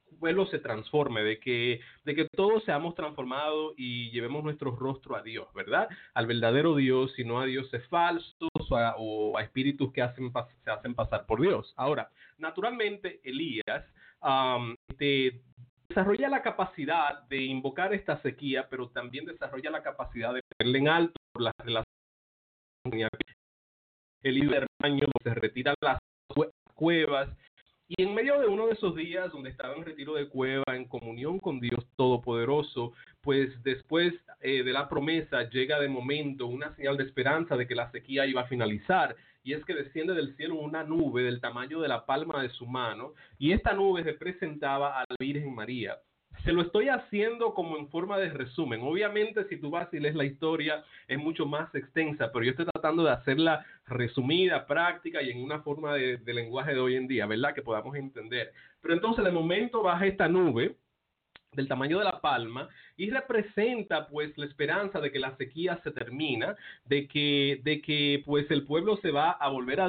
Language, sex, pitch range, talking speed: English, male, 125-165 Hz, 180 wpm